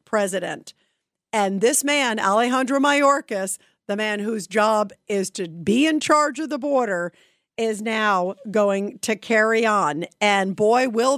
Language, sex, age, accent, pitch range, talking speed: English, female, 50-69, American, 195-240 Hz, 145 wpm